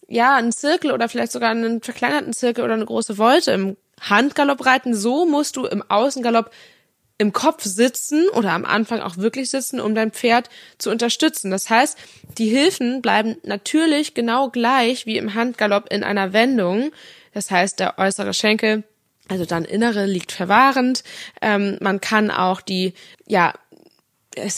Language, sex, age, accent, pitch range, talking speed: German, female, 20-39, German, 195-235 Hz, 160 wpm